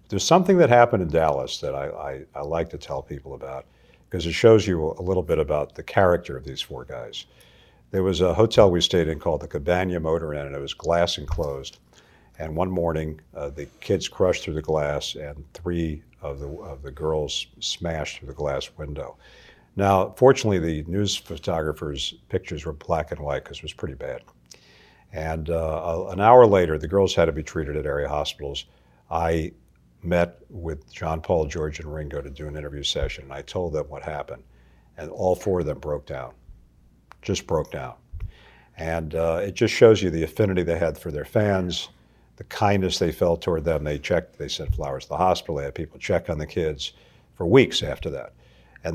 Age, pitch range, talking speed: 50-69, 75-90 Hz, 200 wpm